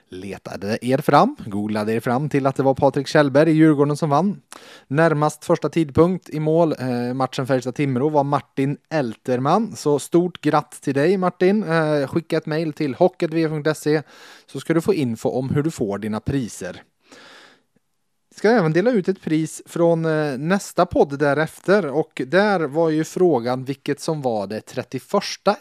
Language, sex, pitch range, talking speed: Swedish, male, 130-165 Hz, 170 wpm